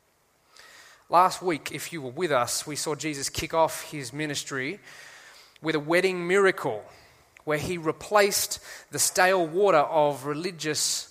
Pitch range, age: 140-180 Hz, 20-39